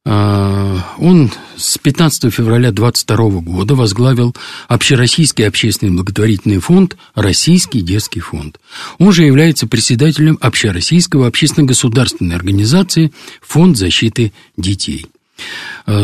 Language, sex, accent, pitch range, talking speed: Russian, male, native, 95-140 Hz, 95 wpm